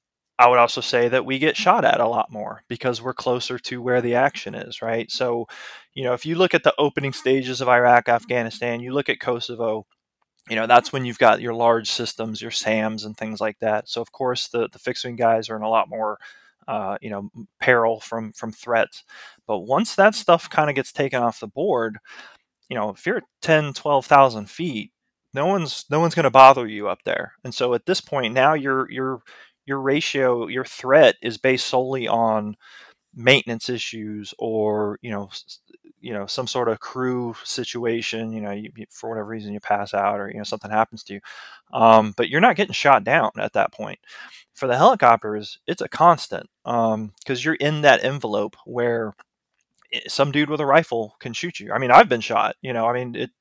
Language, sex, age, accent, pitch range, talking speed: English, male, 20-39, American, 110-135 Hz, 210 wpm